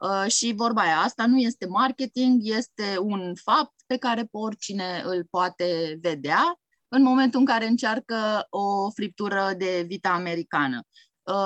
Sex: female